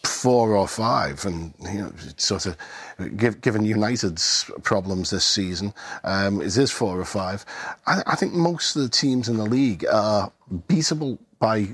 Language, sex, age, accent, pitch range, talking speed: English, male, 40-59, British, 105-130 Hz, 175 wpm